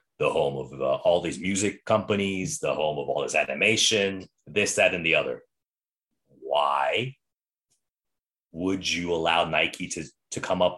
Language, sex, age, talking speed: English, male, 30-49, 155 wpm